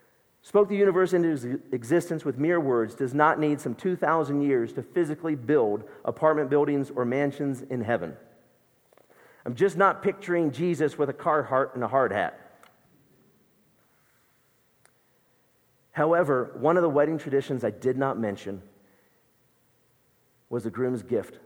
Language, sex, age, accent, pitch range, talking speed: English, male, 50-69, American, 110-145 Hz, 140 wpm